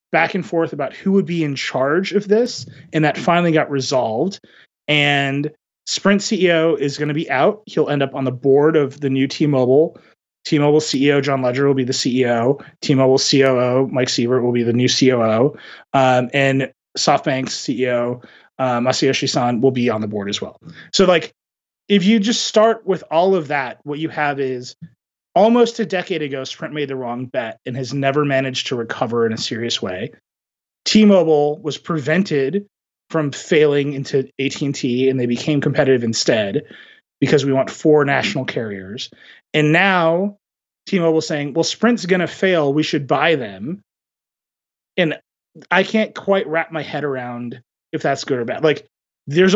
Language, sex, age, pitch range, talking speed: English, male, 30-49, 130-170 Hz, 175 wpm